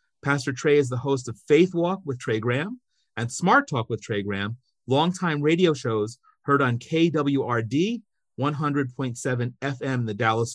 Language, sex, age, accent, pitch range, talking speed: English, male, 40-59, American, 115-150 Hz, 160 wpm